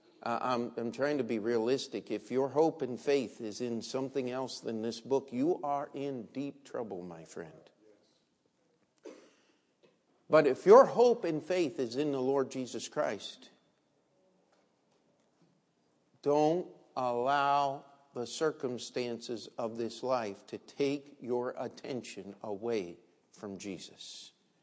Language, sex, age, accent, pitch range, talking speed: English, male, 50-69, American, 140-230 Hz, 125 wpm